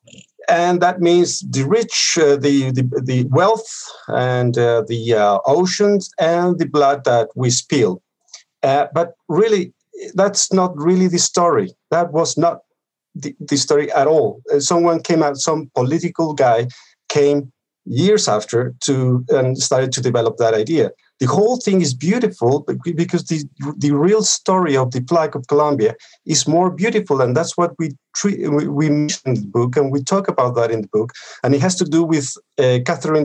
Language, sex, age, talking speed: English, male, 50-69, 175 wpm